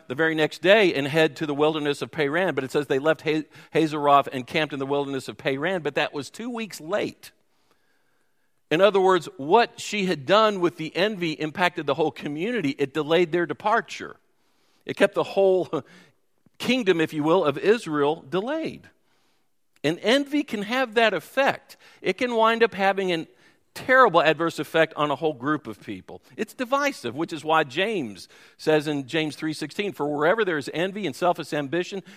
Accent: American